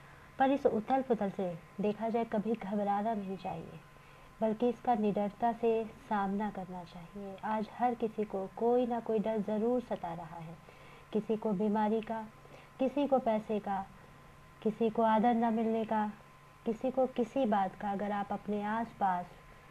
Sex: female